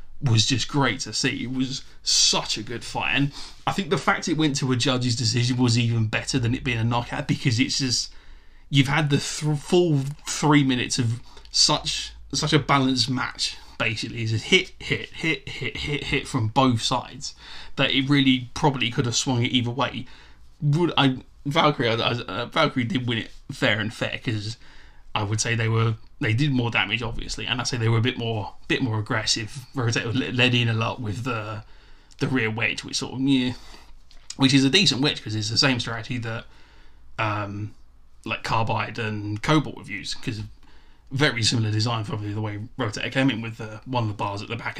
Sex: male